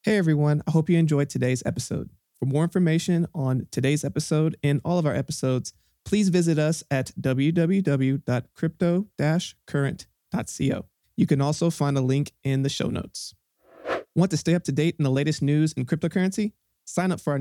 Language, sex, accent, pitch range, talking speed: English, male, American, 135-170 Hz, 170 wpm